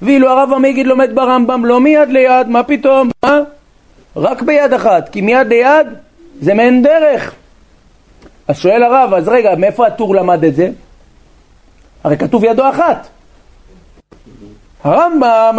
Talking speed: 135 wpm